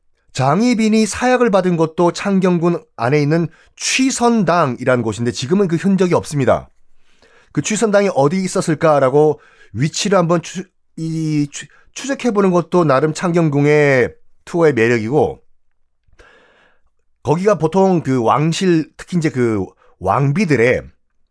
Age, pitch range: 30-49, 125-195 Hz